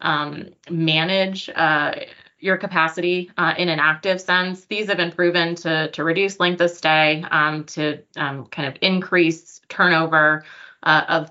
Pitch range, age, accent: 150-180 Hz, 20-39, American